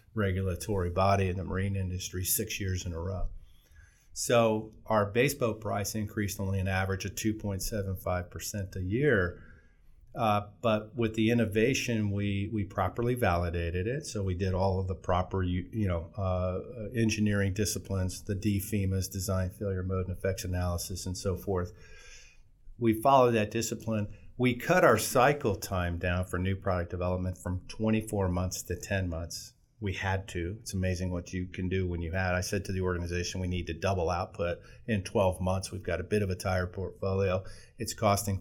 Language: English